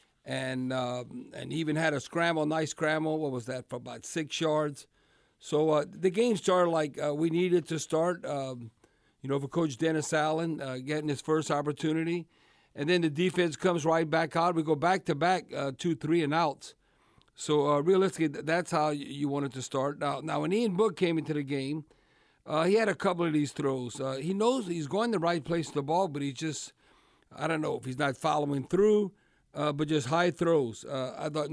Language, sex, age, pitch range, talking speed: English, male, 60-79, 140-165 Hz, 220 wpm